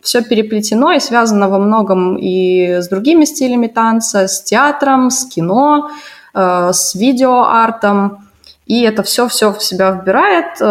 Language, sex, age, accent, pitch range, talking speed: Russian, female, 20-39, native, 185-245 Hz, 130 wpm